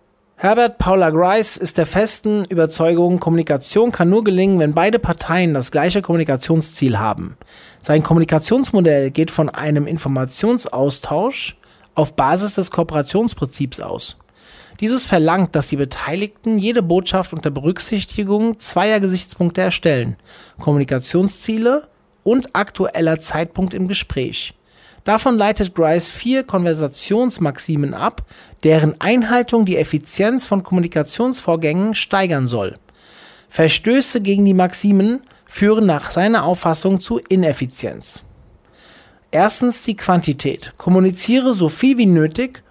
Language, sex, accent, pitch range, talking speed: German, male, German, 155-210 Hz, 110 wpm